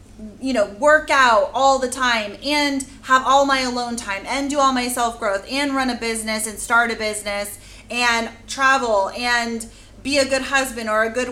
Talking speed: 190 wpm